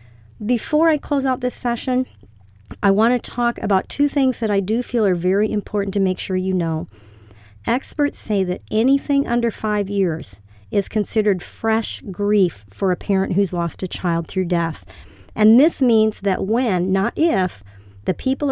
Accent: American